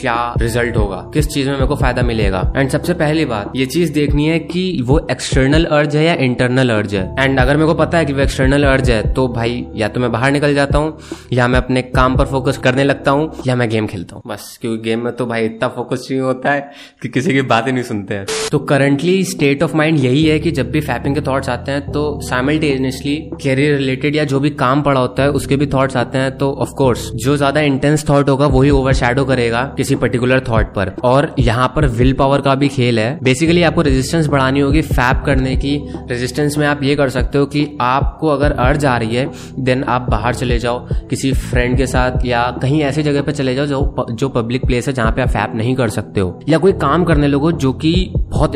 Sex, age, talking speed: male, 20-39, 240 wpm